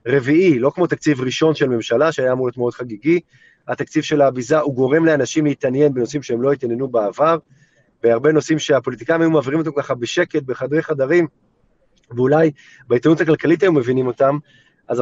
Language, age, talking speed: Hebrew, 30-49, 165 wpm